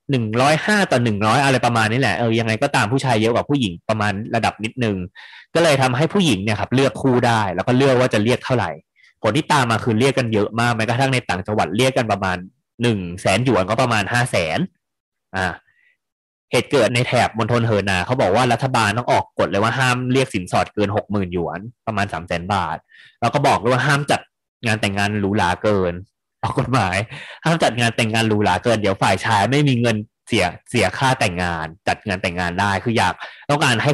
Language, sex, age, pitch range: Thai, male, 20-39, 100-130 Hz